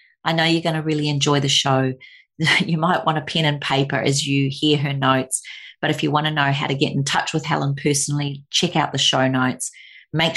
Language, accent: English, Australian